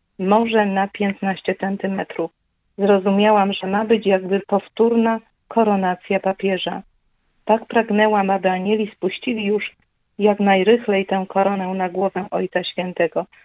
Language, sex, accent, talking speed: Polish, female, native, 115 wpm